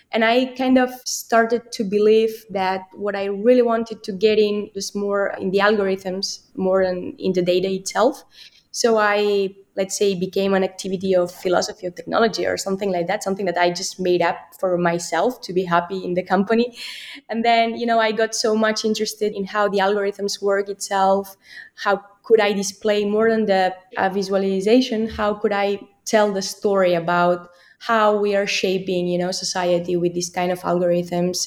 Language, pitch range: English, 180-220 Hz